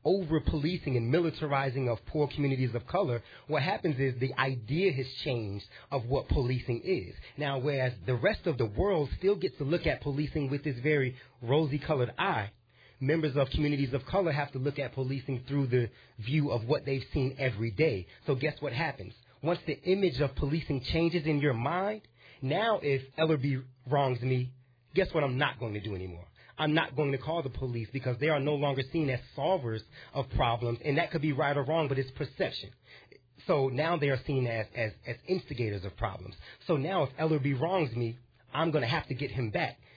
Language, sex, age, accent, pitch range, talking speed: English, male, 30-49, American, 125-155 Hz, 200 wpm